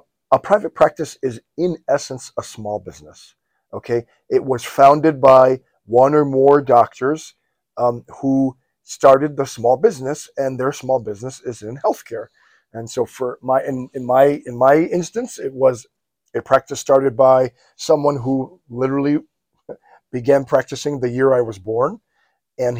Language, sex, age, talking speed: English, male, 40-59, 155 wpm